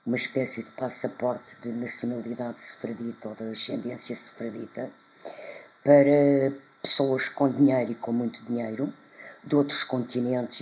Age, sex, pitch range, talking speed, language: 50-69, female, 125-140 Hz, 125 wpm, Portuguese